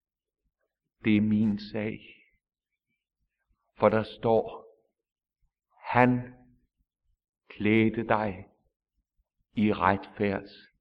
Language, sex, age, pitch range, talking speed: English, male, 60-79, 100-125 Hz, 65 wpm